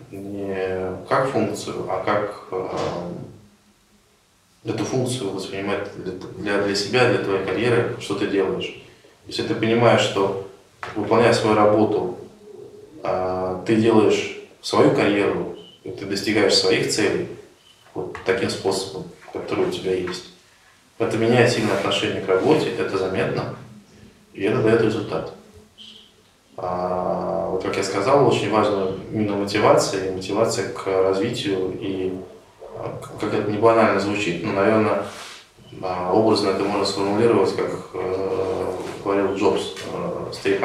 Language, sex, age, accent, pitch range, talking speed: Russian, male, 20-39, native, 95-115 Hz, 120 wpm